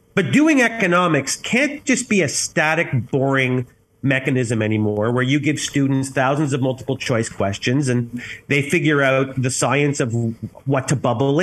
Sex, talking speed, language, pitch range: male, 160 wpm, English, 125-165 Hz